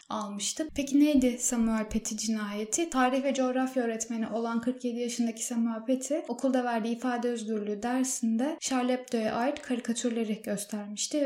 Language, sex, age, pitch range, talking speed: Turkish, female, 10-29, 225-255 Hz, 130 wpm